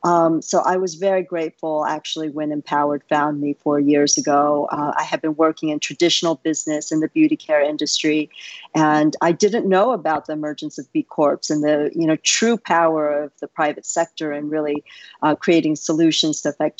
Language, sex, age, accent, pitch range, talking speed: English, female, 50-69, American, 150-170 Hz, 195 wpm